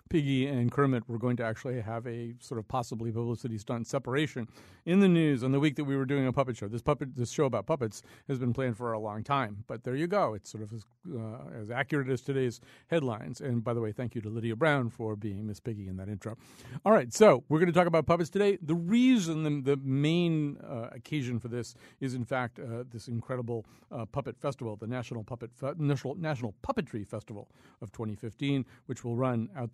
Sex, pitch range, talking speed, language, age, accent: male, 115-145 Hz, 225 wpm, English, 50-69, American